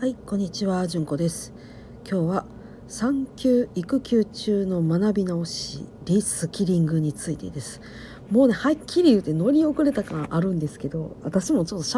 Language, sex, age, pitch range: Japanese, female, 50-69, 160-250 Hz